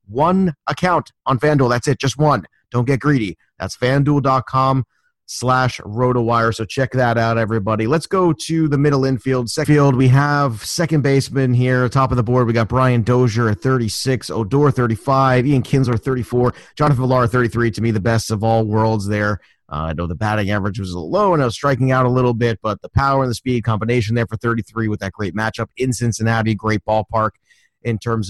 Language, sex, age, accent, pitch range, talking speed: English, male, 30-49, American, 110-130 Hz, 205 wpm